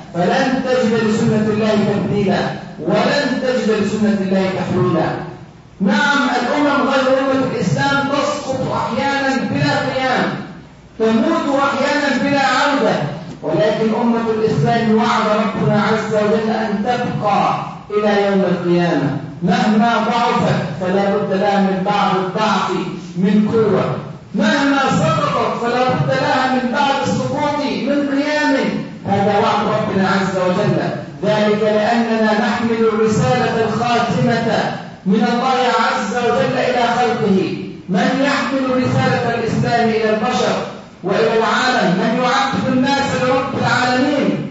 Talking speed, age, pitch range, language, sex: 115 wpm, 40-59, 195-245 Hz, Arabic, male